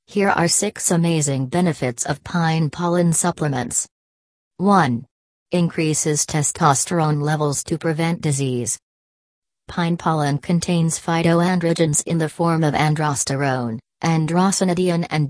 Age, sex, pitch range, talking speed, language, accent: 40-59, female, 145-170 Hz, 105 wpm, English, American